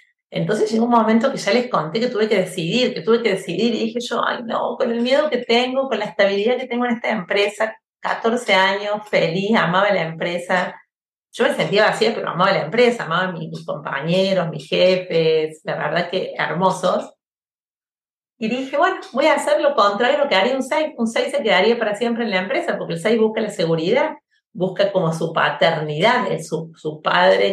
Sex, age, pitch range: female, 40-59, 175-230 Hz